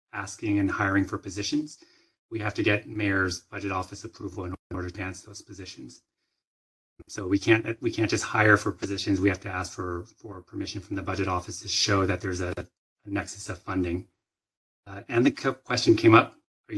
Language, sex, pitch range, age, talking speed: English, male, 95-110 Hz, 30-49, 205 wpm